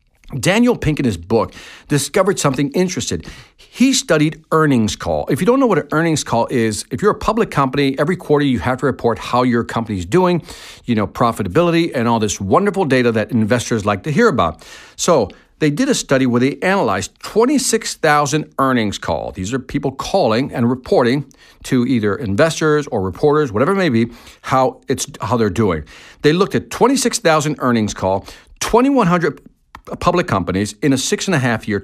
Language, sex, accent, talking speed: English, male, American, 180 wpm